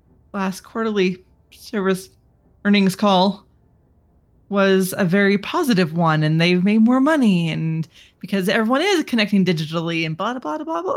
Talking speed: 150 wpm